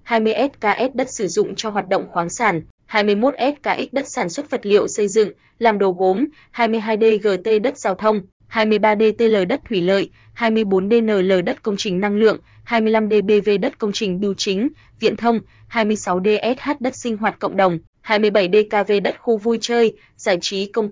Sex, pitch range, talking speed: female, 200-230 Hz, 160 wpm